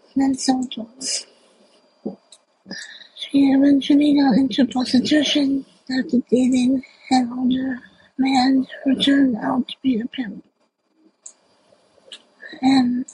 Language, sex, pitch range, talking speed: English, female, 255-280 Hz, 90 wpm